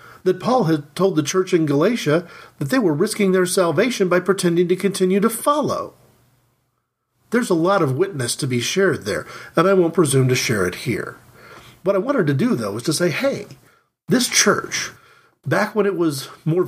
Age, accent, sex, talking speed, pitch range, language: 40-59, American, male, 195 wpm, 135-185 Hz, English